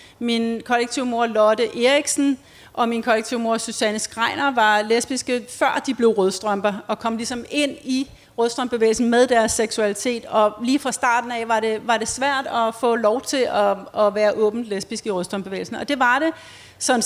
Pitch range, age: 220-255 Hz, 40-59